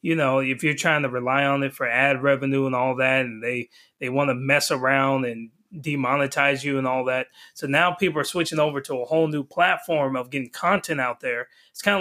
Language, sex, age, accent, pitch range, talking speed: English, male, 20-39, American, 130-160 Hz, 225 wpm